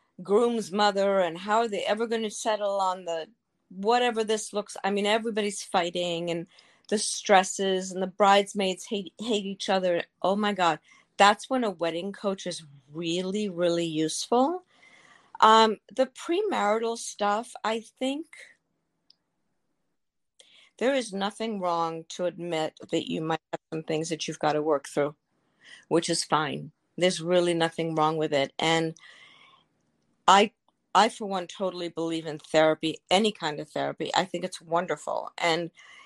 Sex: female